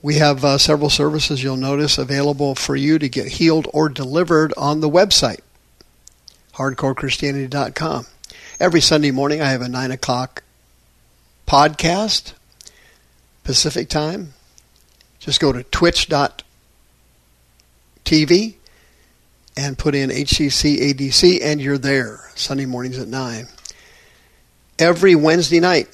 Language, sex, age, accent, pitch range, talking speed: English, male, 50-69, American, 125-155 Hz, 110 wpm